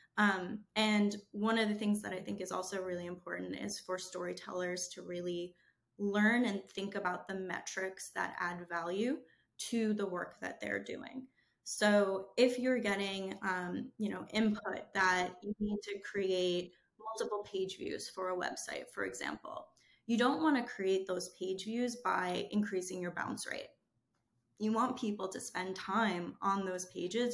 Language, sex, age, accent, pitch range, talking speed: English, female, 10-29, American, 180-210 Hz, 165 wpm